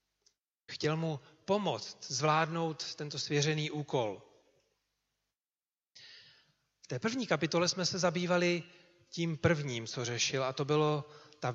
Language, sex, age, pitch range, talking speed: Czech, male, 40-59, 140-170 Hz, 115 wpm